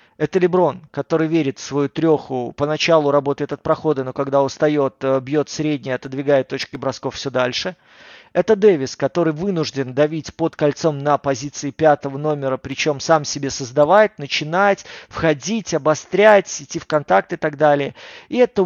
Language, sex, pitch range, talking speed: Russian, male, 145-185 Hz, 150 wpm